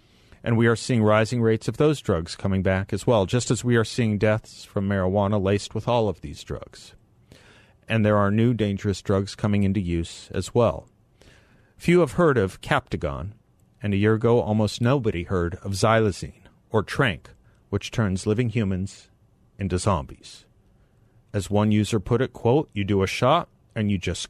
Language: English